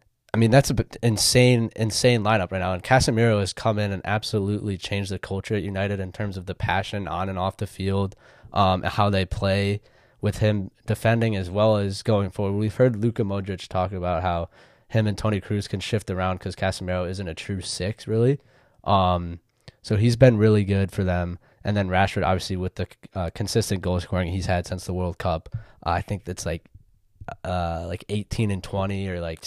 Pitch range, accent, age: 95-110 Hz, American, 10-29